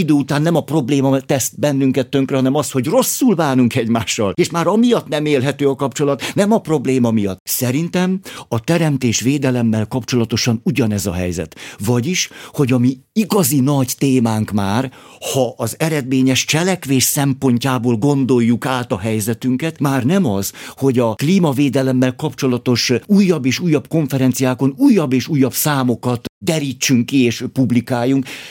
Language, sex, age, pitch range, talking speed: Hungarian, male, 50-69, 125-155 Hz, 145 wpm